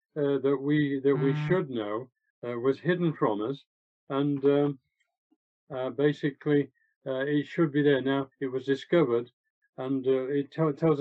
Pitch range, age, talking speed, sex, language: 130-160 Hz, 50-69, 155 wpm, male, English